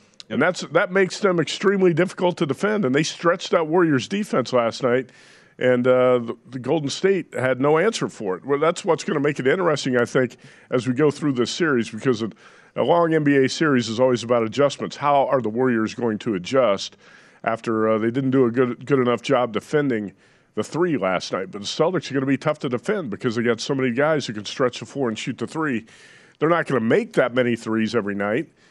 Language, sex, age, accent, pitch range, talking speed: English, male, 50-69, American, 120-150 Hz, 230 wpm